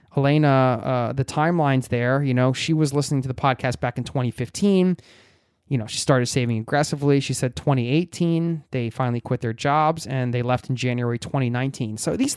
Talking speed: 185 wpm